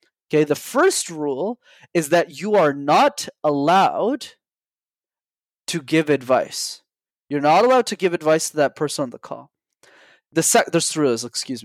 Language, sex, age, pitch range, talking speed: English, male, 20-39, 150-200 Hz, 155 wpm